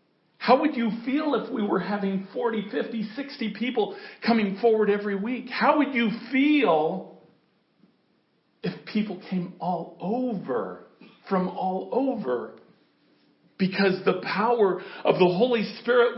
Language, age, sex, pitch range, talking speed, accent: English, 50-69, male, 185-245 Hz, 130 wpm, American